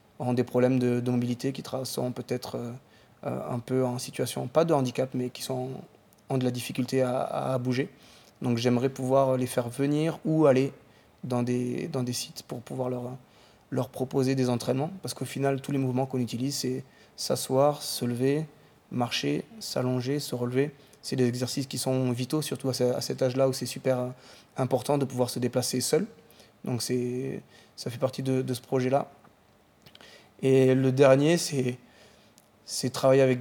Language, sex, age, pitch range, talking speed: French, male, 20-39, 125-135 Hz, 175 wpm